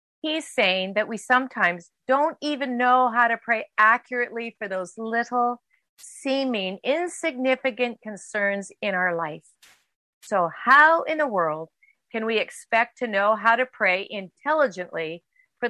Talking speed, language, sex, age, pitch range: 140 wpm, English, female, 40-59, 190-265 Hz